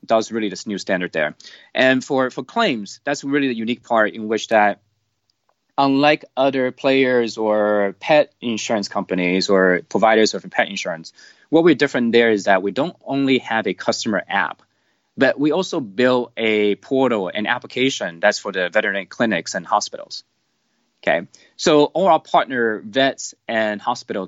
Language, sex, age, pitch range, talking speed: English, male, 20-39, 105-130 Hz, 165 wpm